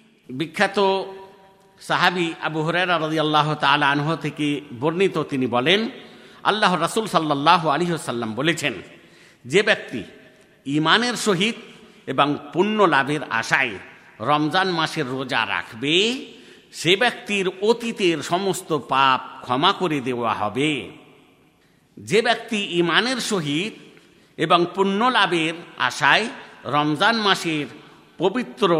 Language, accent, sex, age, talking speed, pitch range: Bengali, native, male, 50-69, 100 wpm, 150-200 Hz